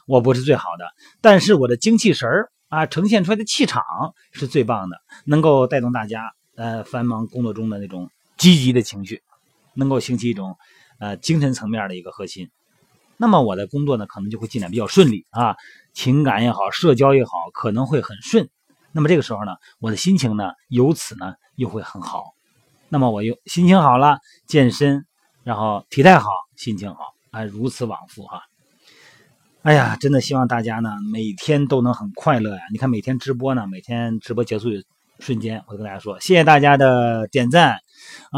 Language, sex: Chinese, male